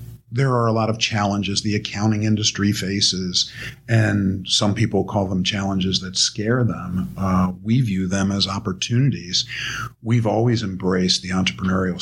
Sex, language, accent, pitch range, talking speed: male, English, American, 95-120 Hz, 150 wpm